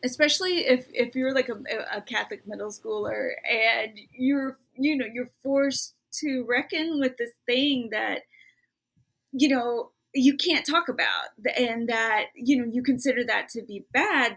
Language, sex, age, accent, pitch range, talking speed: English, female, 30-49, American, 215-280 Hz, 160 wpm